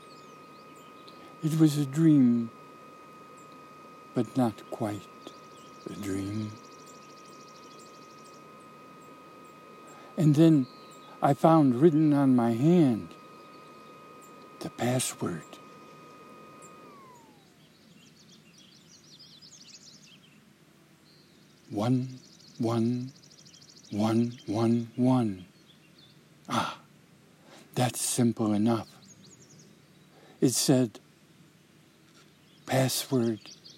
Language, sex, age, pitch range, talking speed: English, male, 60-79, 120-170 Hz, 55 wpm